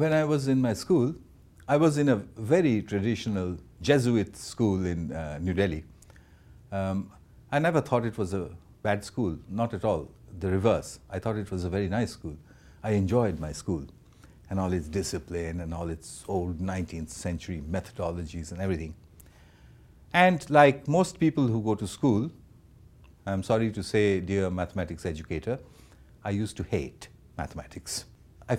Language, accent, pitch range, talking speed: English, Indian, 90-130 Hz, 165 wpm